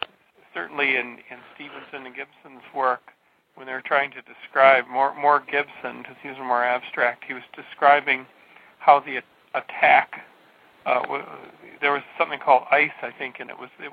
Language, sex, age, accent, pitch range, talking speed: English, male, 50-69, American, 125-140 Hz, 170 wpm